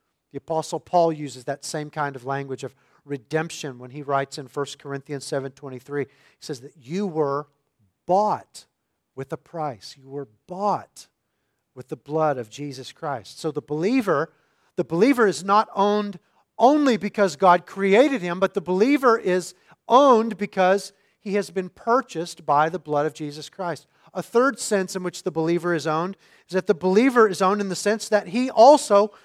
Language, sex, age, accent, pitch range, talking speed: English, male, 40-59, American, 145-200 Hz, 175 wpm